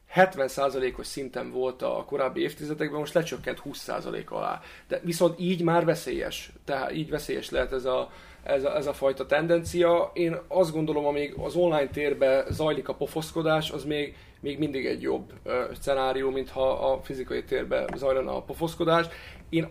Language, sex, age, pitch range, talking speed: Hungarian, male, 30-49, 135-170 Hz, 160 wpm